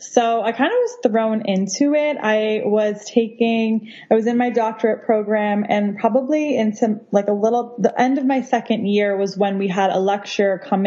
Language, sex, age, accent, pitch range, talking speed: English, female, 20-39, American, 195-230 Hz, 200 wpm